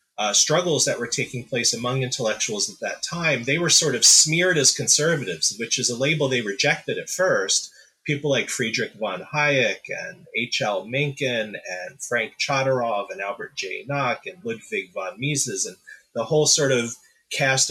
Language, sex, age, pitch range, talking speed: English, male, 30-49, 125-150 Hz, 175 wpm